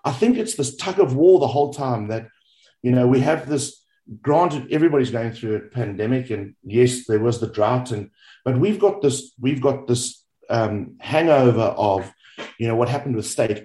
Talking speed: 200 wpm